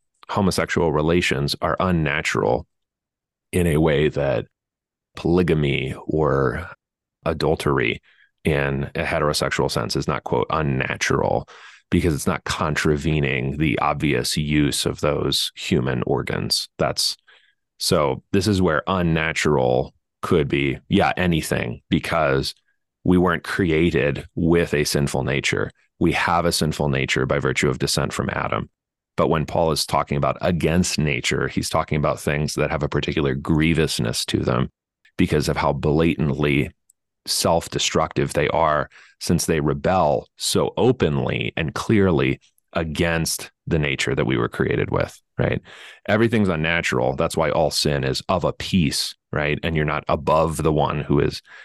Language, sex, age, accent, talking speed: English, male, 30-49, American, 140 wpm